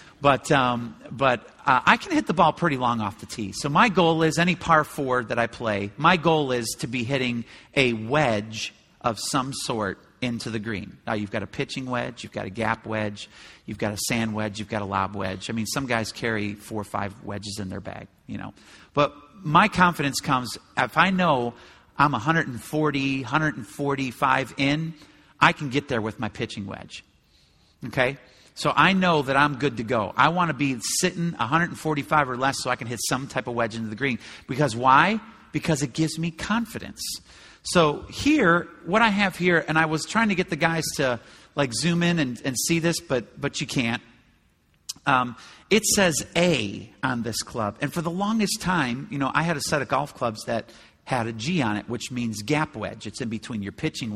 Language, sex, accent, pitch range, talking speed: English, male, American, 115-155 Hz, 210 wpm